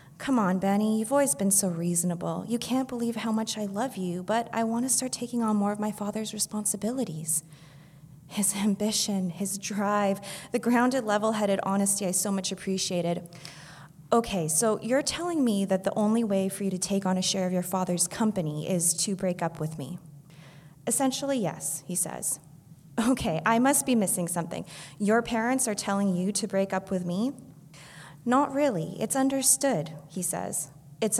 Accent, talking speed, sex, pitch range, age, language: American, 180 wpm, female, 170-220 Hz, 20-39, English